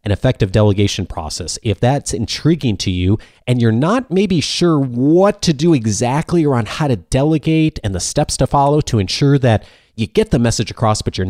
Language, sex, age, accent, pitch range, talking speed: English, male, 30-49, American, 110-150 Hz, 200 wpm